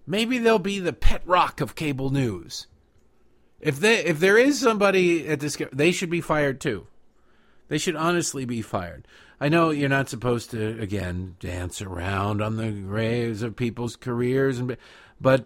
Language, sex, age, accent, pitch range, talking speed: English, male, 50-69, American, 105-175 Hz, 175 wpm